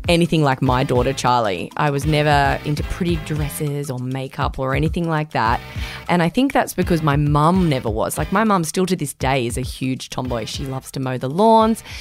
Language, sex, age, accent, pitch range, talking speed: English, female, 20-39, Australian, 145-195 Hz, 215 wpm